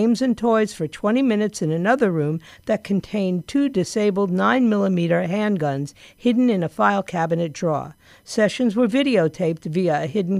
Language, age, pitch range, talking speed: English, 50-69, 165-220 Hz, 155 wpm